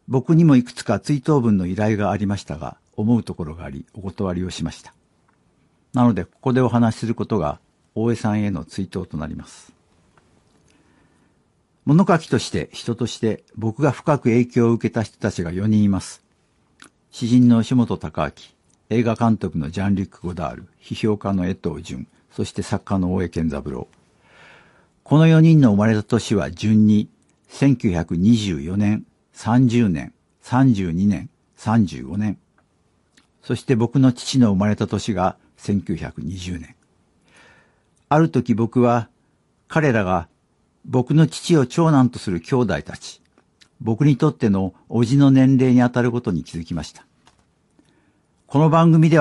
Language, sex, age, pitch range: Japanese, male, 60-79, 100-125 Hz